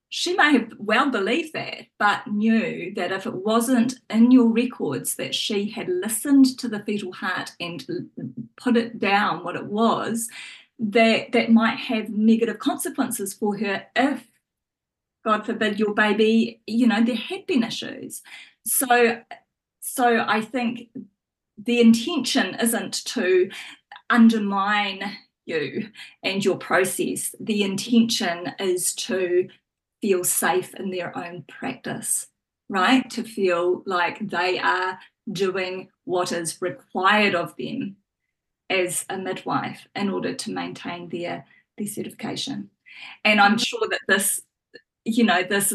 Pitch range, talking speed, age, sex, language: 195-235 Hz, 135 wpm, 30-49, female, English